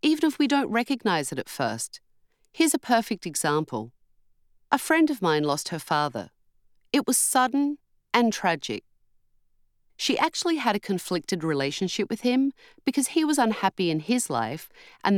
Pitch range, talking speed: 165-250 Hz, 160 wpm